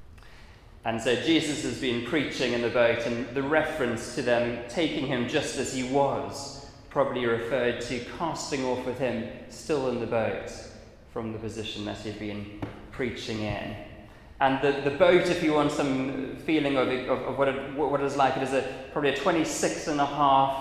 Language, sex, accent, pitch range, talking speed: English, male, British, 115-140 Hz, 190 wpm